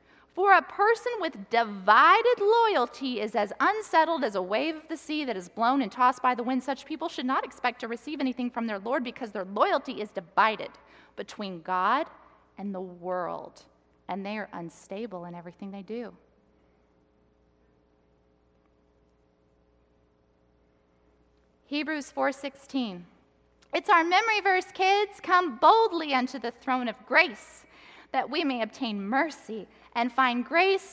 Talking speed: 145 wpm